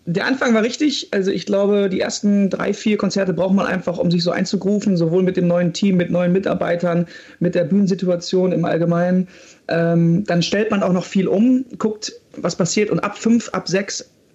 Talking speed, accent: 200 wpm, German